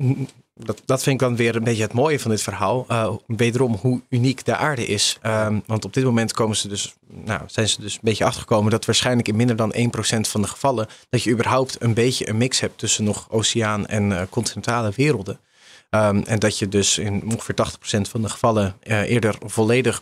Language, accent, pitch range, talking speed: Dutch, Dutch, 105-120 Hz, 220 wpm